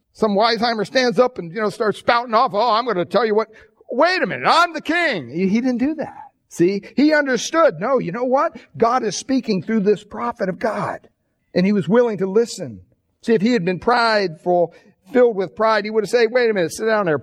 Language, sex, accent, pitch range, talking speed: English, male, American, 155-220 Hz, 235 wpm